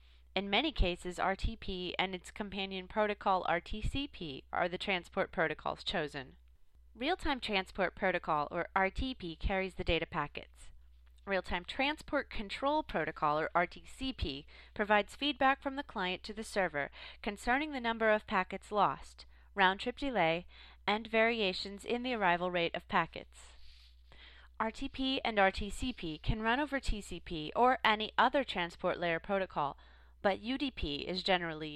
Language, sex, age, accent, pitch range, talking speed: English, female, 30-49, American, 155-220 Hz, 130 wpm